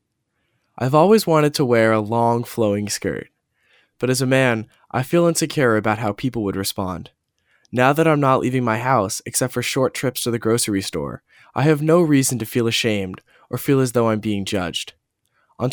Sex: male